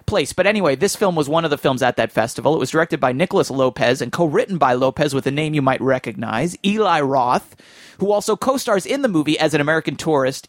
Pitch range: 135-185 Hz